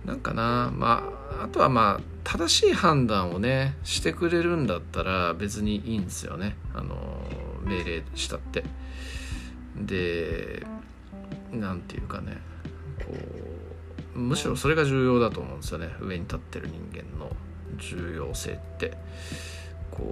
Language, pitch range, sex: Japanese, 80-120 Hz, male